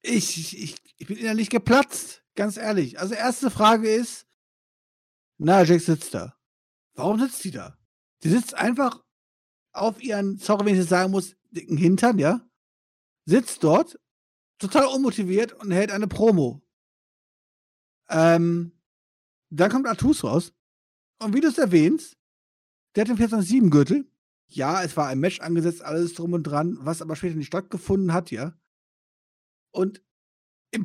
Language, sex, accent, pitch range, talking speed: German, male, German, 140-210 Hz, 145 wpm